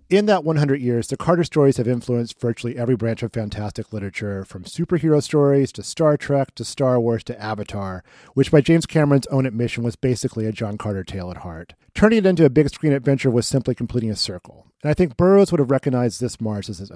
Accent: American